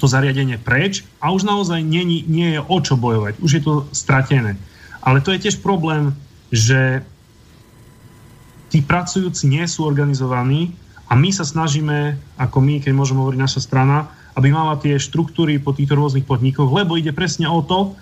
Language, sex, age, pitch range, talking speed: Slovak, male, 30-49, 135-165 Hz, 170 wpm